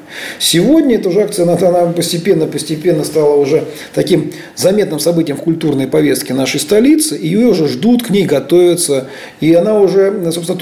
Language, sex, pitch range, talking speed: Russian, male, 140-205 Hz, 160 wpm